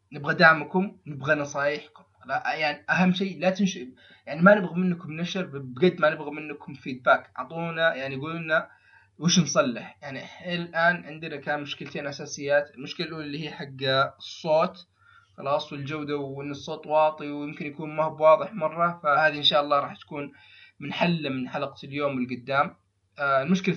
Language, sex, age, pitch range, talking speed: Arabic, male, 20-39, 130-160 Hz, 150 wpm